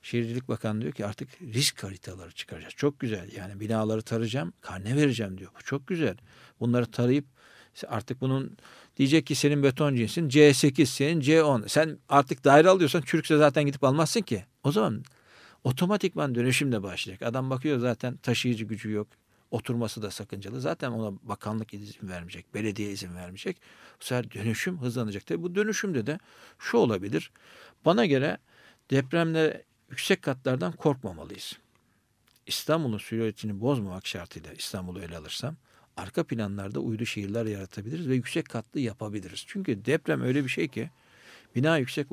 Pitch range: 105-140 Hz